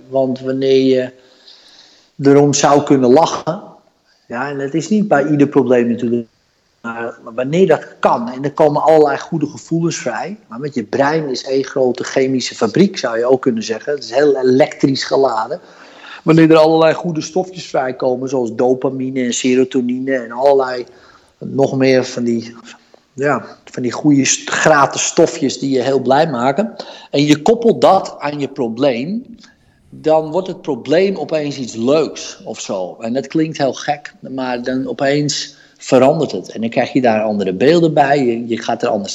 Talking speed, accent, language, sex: 170 wpm, Dutch, Dutch, male